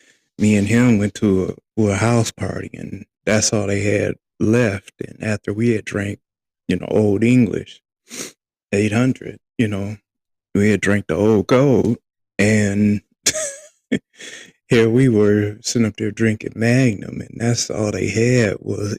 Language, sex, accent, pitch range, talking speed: English, male, American, 100-115 Hz, 150 wpm